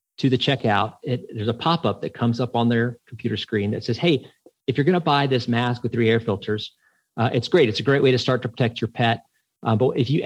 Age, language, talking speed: 40-59, English, 250 wpm